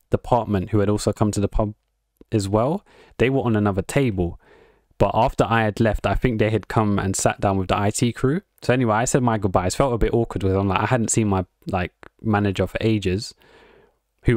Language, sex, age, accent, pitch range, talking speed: English, male, 20-39, British, 100-130 Hz, 225 wpm